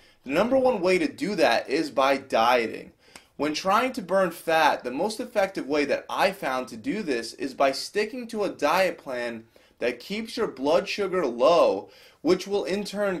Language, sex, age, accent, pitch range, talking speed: English, male, 20-39, American, 140-200 Hz, 190 wpm